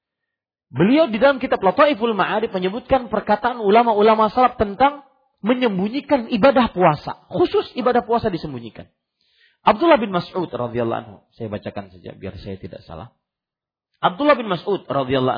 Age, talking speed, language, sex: 40-59, 135 wpm, Malay, male